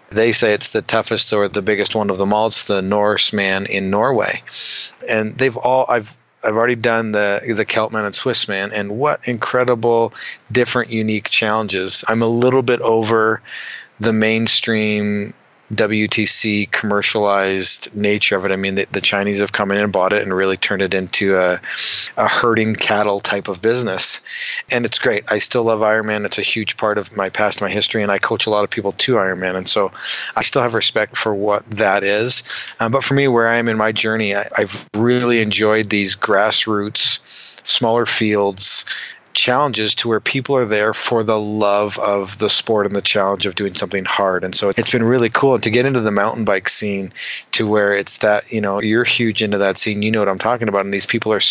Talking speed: 205 wpm